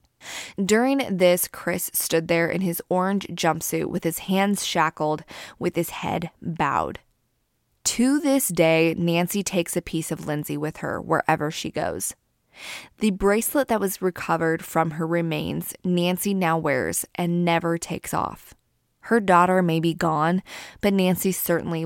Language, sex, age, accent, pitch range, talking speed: English, female, 20-39, American, 165-195 Hz, 150 wpm